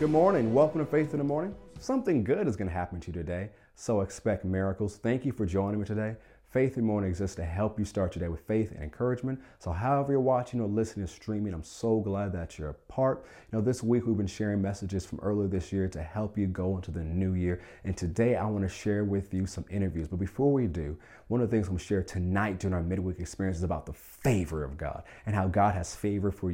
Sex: male